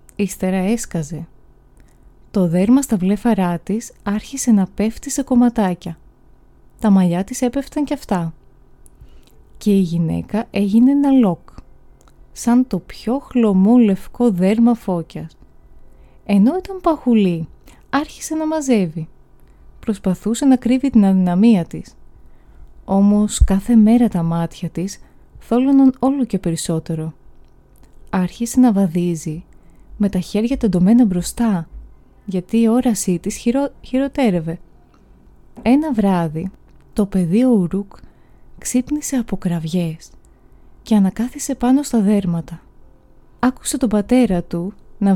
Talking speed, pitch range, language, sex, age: 110 wpm, 175-240 Hz, Greek, female, 20-39